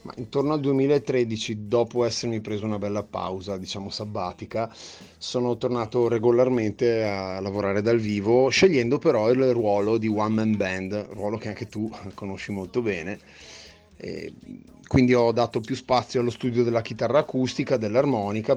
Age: 30-49